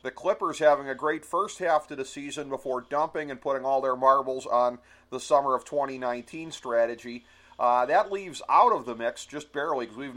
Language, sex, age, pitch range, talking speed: English, male, 40-59, 125-160 Hz, 200 wpm